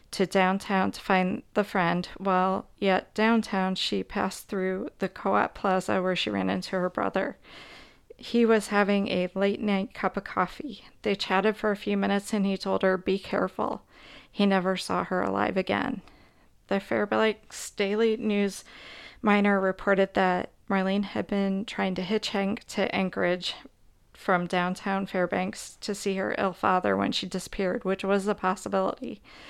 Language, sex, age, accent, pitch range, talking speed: English, female, 40-59, American, 185-205 Hz, 160 wpm